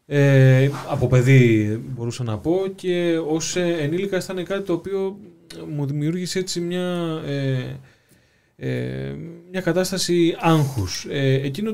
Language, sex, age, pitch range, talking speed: Greek, male, 20-39, 125-165 Hz, 100 wpm